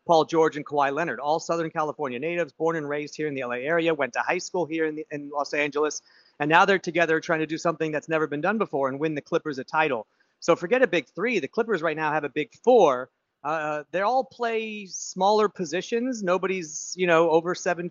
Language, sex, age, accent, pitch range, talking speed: English, male, 40-59, American, 150-180 Hz, 230 wpm